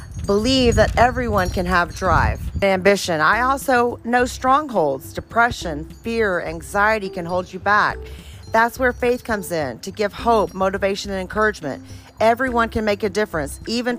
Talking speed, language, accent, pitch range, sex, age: 155 wpm, English, American, 195-235 Hz, female, 40-59